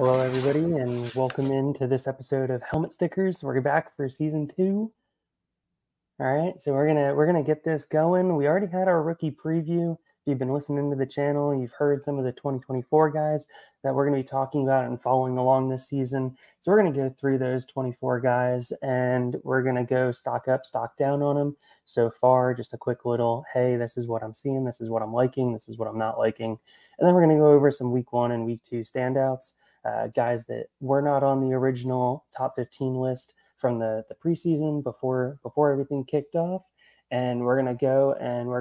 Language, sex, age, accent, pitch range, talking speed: English, male, 20-39, American, 125-145 Hz, 220 wpm